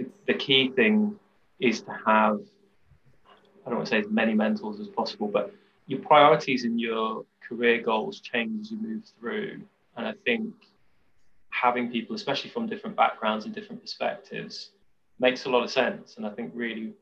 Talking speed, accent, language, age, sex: 175 wpm, British, English, 20-39, male